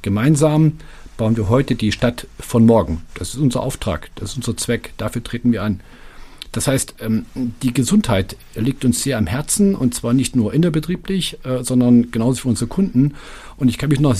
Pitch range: 115-150 Hz